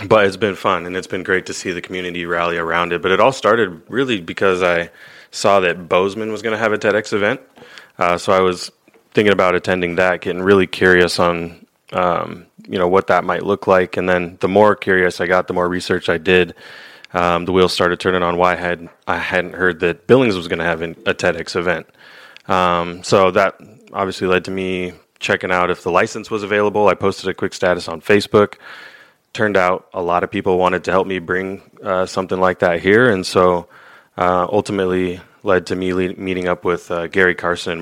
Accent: American